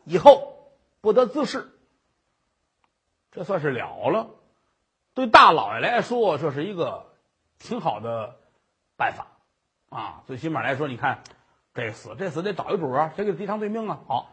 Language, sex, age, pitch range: Chinese, male, 50-69, 195-295 Hz